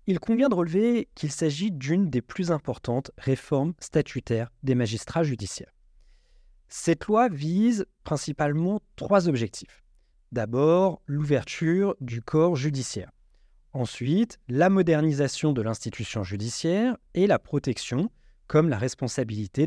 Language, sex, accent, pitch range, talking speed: French, male, French, 125-200 Hz, 115 wpm